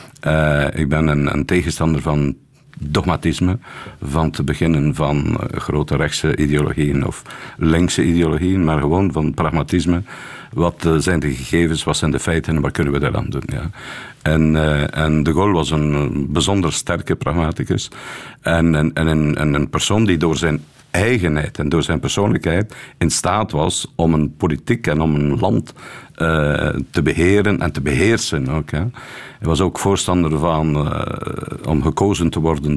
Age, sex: 50-69, male